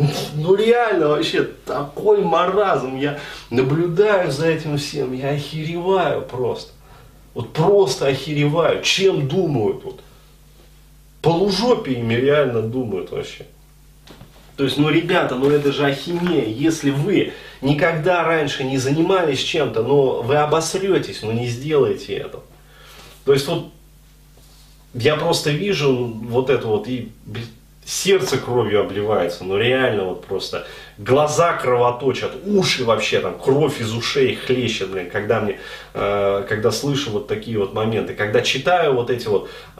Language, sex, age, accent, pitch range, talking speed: Russian, male, 30-49, native, 125-175 Hz, 135 wpm